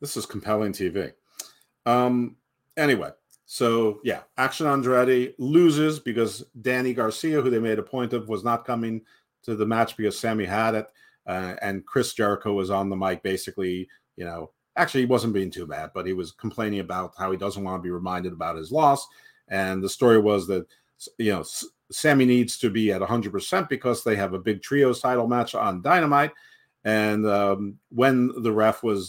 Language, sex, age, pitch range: English, male, 50-69, 95-125 Hz